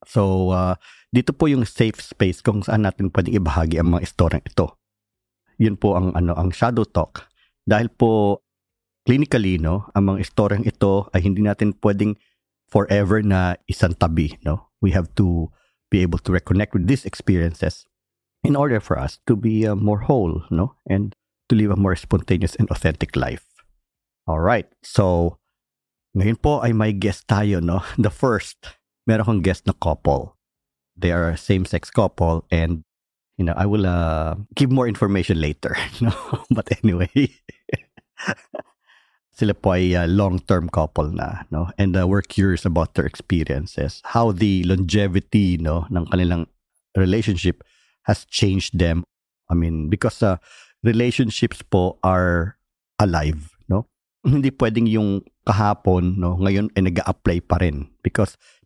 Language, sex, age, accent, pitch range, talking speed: Filipino, male, 50-69, native, 90-105 Hz, 150 wpm